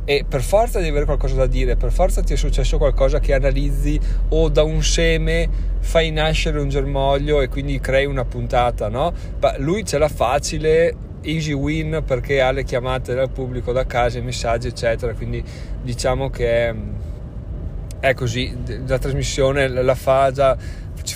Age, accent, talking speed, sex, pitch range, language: 30-49, native, 170 wpm, male, 120-145 Hz, Italian